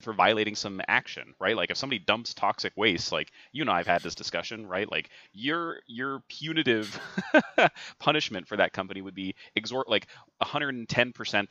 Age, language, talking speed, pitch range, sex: 30-49, English, 170 wpm, 85-110 Hz, male